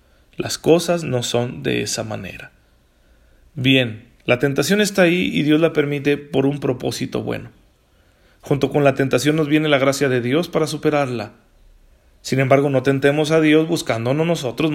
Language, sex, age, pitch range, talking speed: Spanish, male, 40-59, 120-150 Hz, 165 wpm